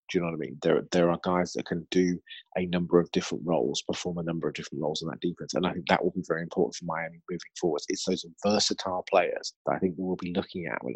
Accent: British